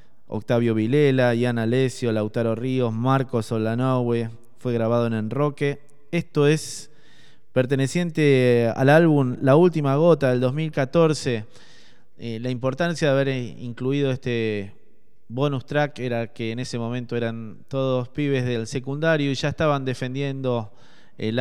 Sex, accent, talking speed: male, Argentinian, 130 wpm